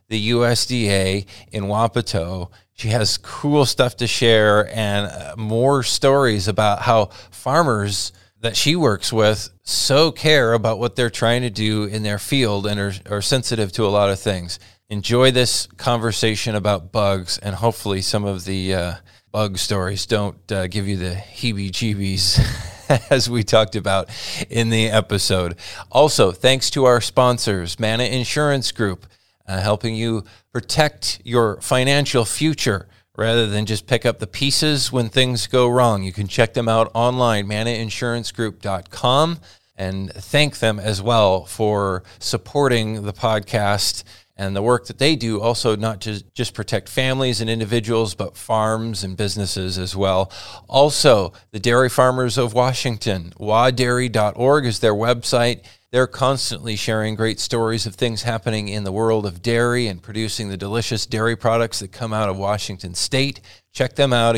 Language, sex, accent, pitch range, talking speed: English, male, American, 100-120 Hz, 155 wpm